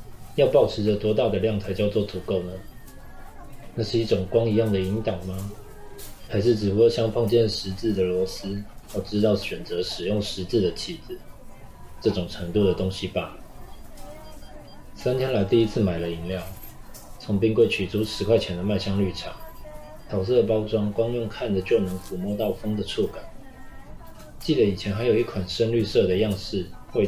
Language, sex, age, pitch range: Chinese, male, 20-39, 95-115 Hz